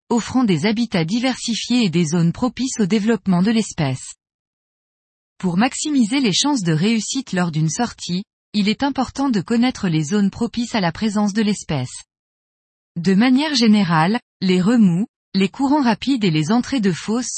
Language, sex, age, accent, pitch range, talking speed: French, female, 20-39, French, 180-240 Hz, 160 wpm